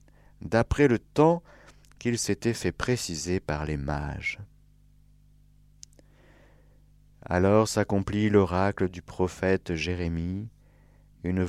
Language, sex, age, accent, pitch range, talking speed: French, male, 50-69, French, 85-110 Hz, 90 wpm